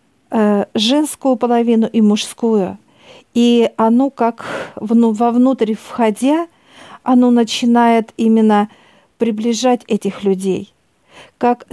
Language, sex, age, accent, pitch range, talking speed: Russian, female, 50-69, native, 210-235 Hz, 80 wpm